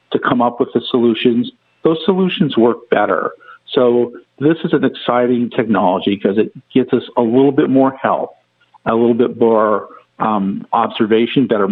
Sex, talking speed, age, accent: male, 165 wpm, 50-69, American